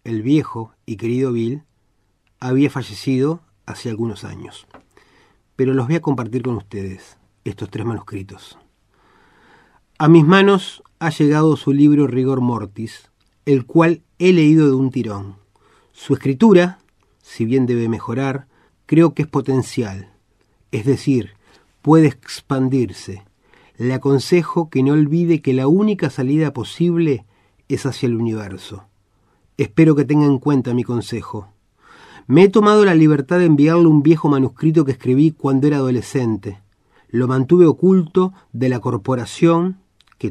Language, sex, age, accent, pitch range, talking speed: Spanish, male, 30-49, Argentinian, 110-155 Hz, 140 wpm